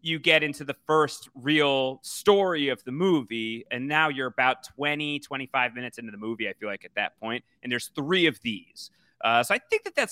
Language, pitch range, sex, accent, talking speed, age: English, 125-180 Hz, male, American, 220 wpm, 30-49